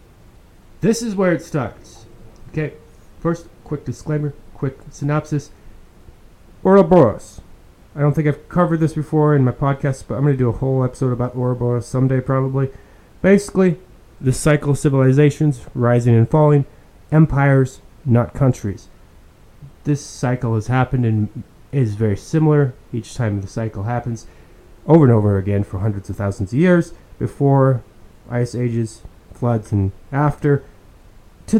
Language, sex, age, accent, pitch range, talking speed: English, male, 30-49, American, 110-145 Hz, 140 wpm